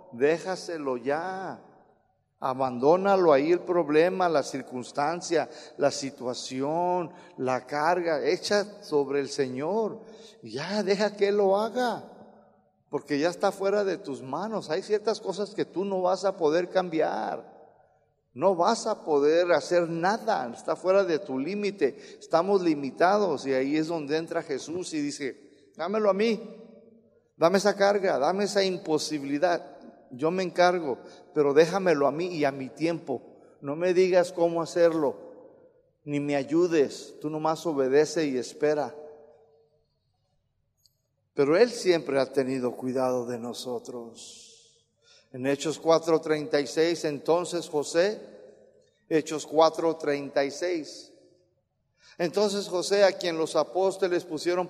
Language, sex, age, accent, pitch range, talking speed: Spanish, male, 50-69, Mexican, 145-195 Hz, 125 wpm